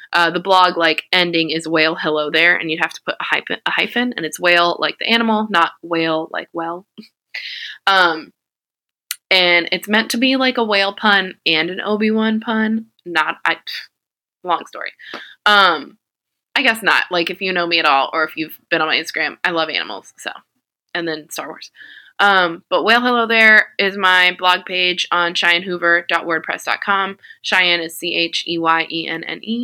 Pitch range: 170-220 Hz